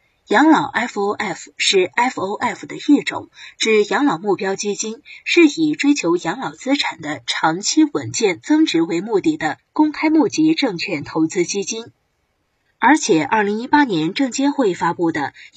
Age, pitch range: 20-39, 205-320 Hz